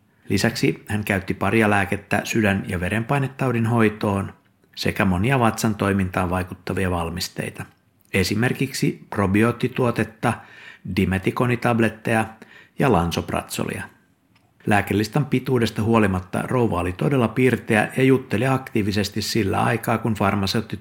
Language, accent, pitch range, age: Finnish, native, 95-120 Hz, 60-79